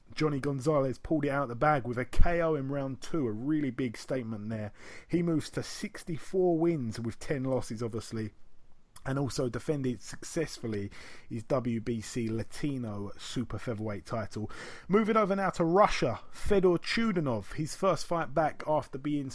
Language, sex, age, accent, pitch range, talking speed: English, male, 30-49, British, 120-150 Hz, 160 wpm